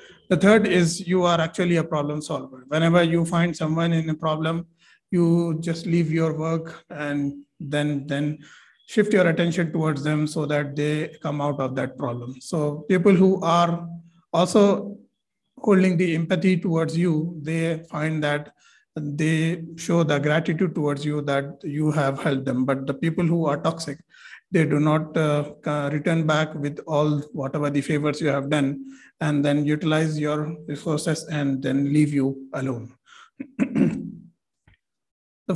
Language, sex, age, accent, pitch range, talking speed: English, male, 50-69, Indian, 145-170 Hz, 155 wpm